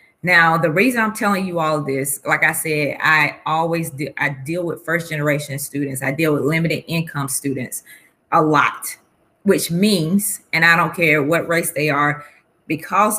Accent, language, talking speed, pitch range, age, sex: American, English, 175 wpm, 150-175 Hz, 20-39, female